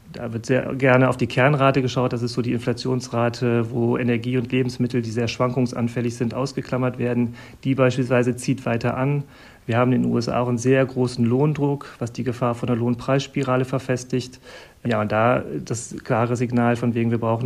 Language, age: German, 40-59